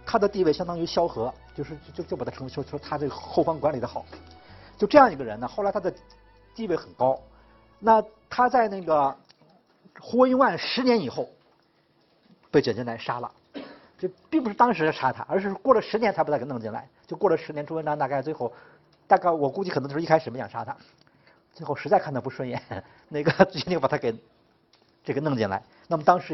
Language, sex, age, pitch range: Chinese, male, 50-69, 140-205 Hz